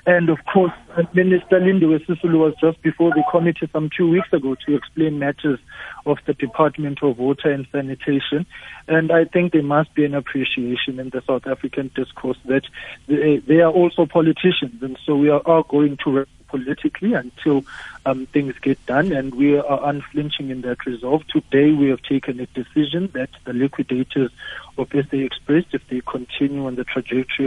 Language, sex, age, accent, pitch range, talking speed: English, male, 60-79, South African, 135-155 Hz, 180 wpm